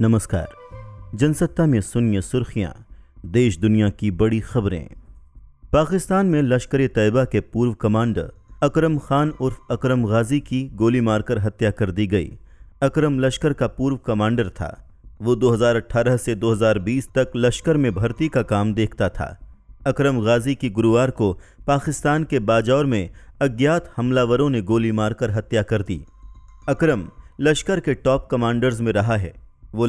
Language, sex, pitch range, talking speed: Hindi, male, 110-135 Hz, 145 wpm